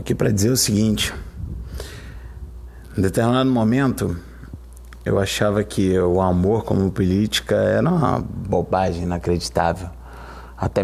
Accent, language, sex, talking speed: Brazilian, Portuguese, male, 110 wpm